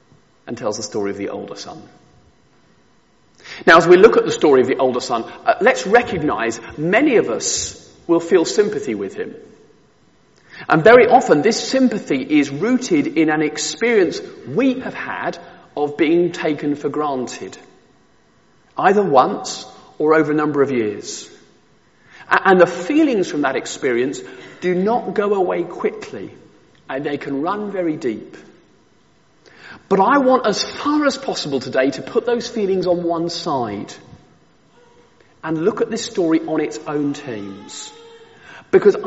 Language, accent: English, British